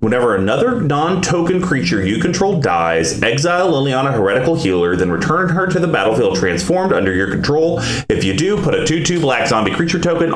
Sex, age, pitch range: male, 30-49, 110-165 Hz